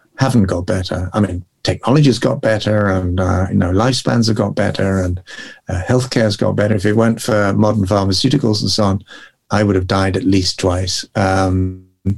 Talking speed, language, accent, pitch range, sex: 185 wpm, English, British, 95-125 Hz, male